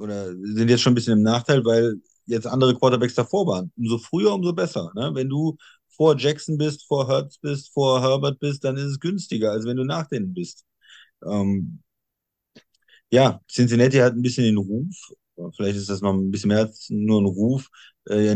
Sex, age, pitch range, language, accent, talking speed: male, 30-49, 110-130 Hz, German, German, 190 wpm